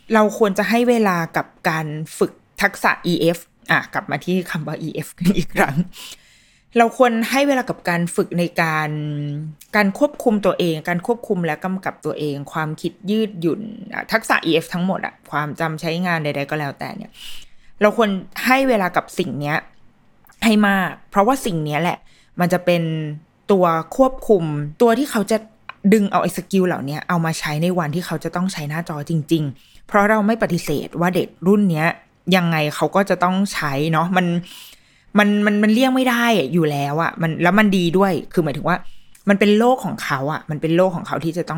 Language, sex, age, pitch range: Thai, female, 20-39, 165-210 Hz